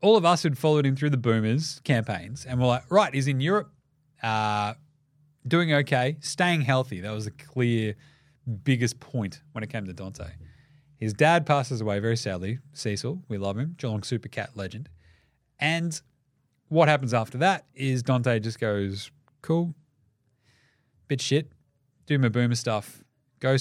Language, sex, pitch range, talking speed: English, male, 115-150 Hz, 165 wpm